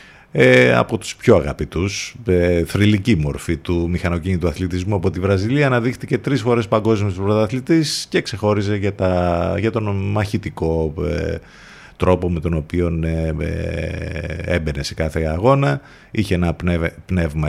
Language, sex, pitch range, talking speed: Greek, male, 80-100 Hz, 145 wpm